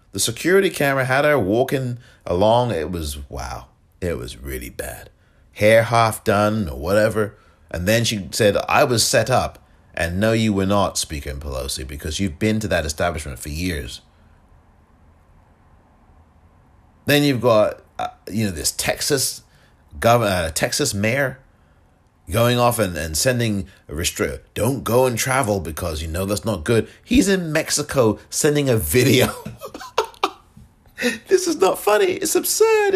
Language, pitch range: English, 80-130 Hz